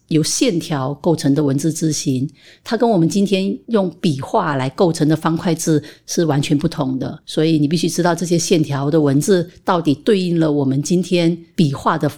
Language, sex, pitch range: Chinese, female, 150-180 Hz